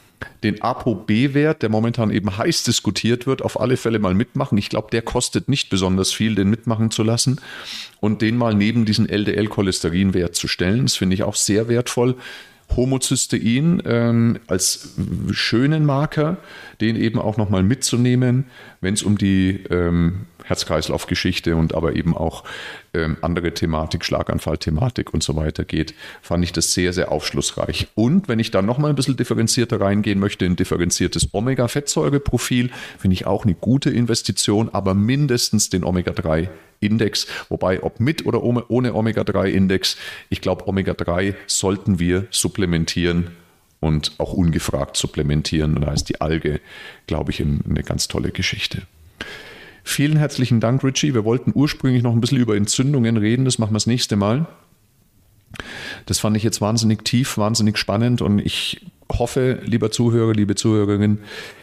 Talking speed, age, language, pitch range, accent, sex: 160 wpm, 40-59, German, 95-120 Hz, German, male